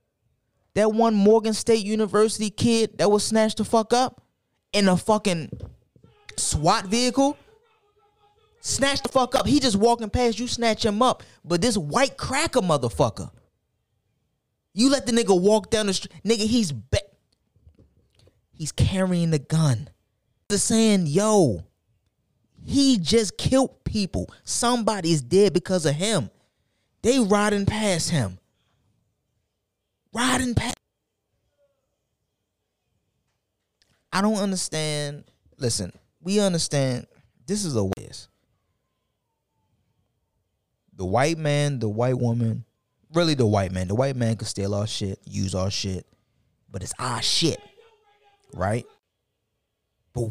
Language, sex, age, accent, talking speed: English, male, 20-39, American, 125 wpm